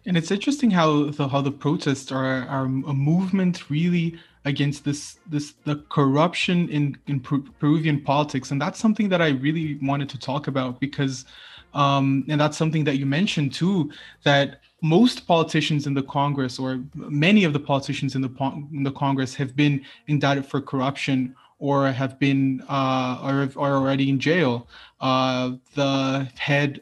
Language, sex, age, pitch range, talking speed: English, male, 20-39, 135-155 Hz, 170 wpm